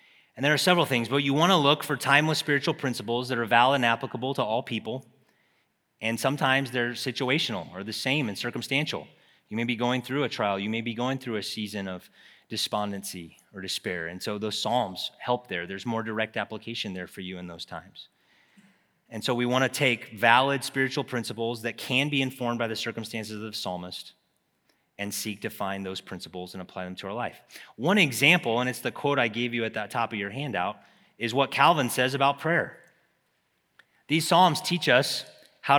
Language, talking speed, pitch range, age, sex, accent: English, 205 wpm, 110-145 Hz, 30-49, male, American